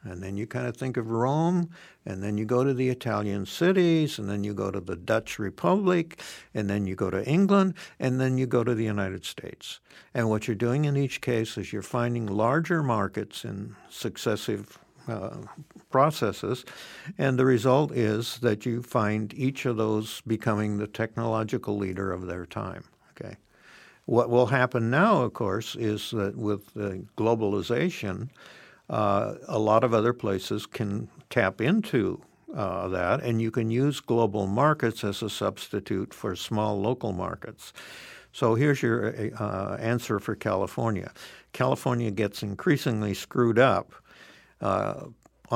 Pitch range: 100-125 Hz